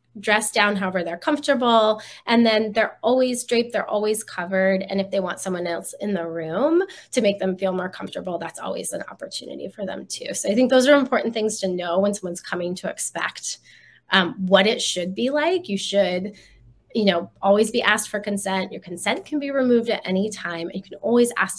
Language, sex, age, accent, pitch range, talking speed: English, female, 20-39, American, 190-230 Hz, 210 wpm